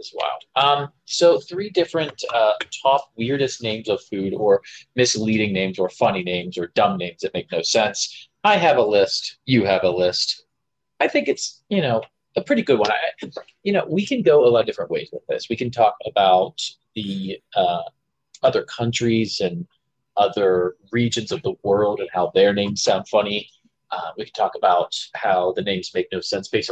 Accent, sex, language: American, male, English